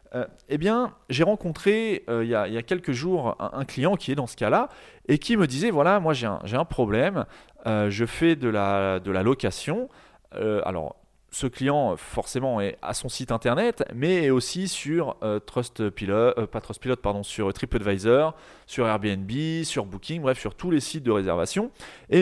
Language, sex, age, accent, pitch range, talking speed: French, male, 30-49, French, 115-160 Hz, 185 wpm